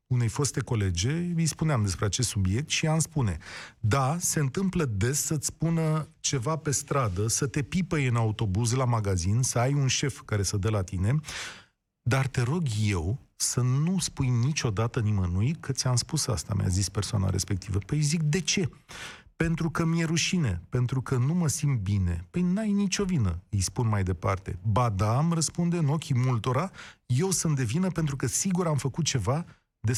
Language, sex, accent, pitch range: Romanian, male, native, 110-155 Hz